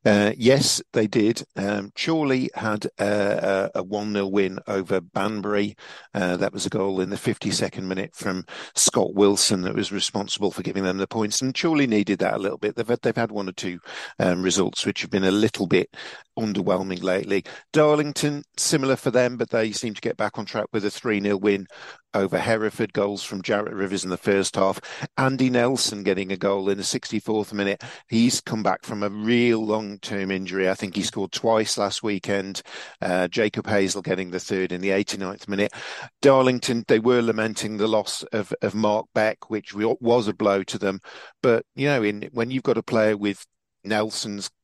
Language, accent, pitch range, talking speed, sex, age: English, British, 100-115 Hz, 195 wpm, male, 50-69